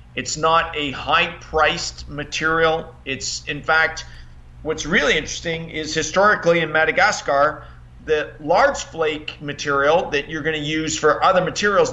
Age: 50-69